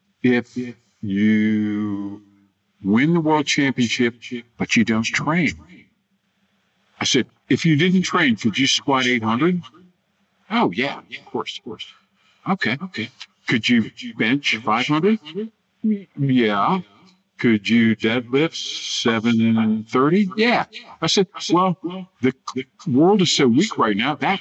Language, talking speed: English, 130 wpm